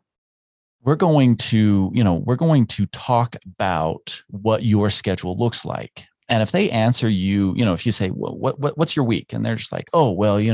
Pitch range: 95-130 Hz